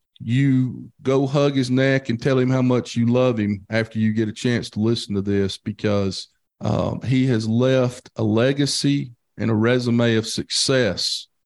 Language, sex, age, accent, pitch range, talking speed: English, male, 40-59, American, 115-160 Hz, 180 wpm